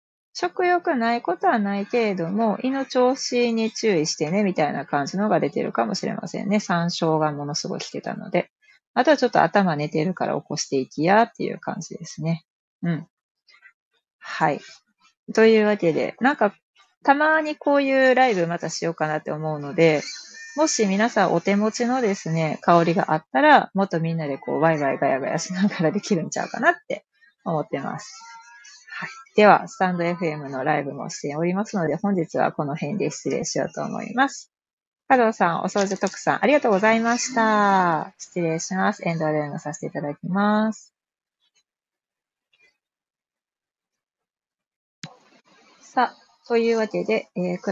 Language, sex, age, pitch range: Japanese, female, 30-49, 170-235 Hz